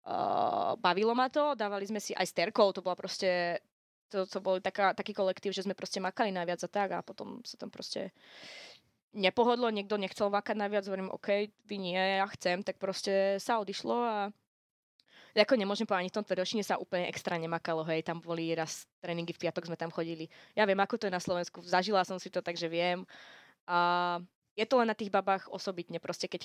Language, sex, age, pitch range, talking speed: Slovak, female, 20-39, 175-205 Hz, 200 wpm